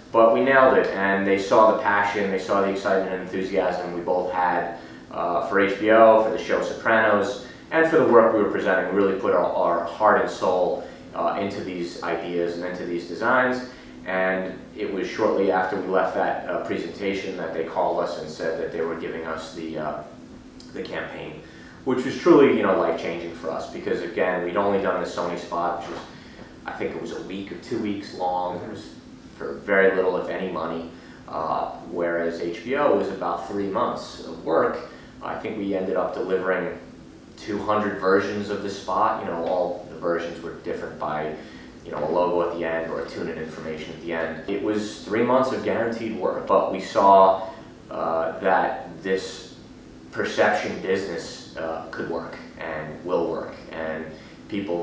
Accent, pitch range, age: American, 85-100 Hz, 30-49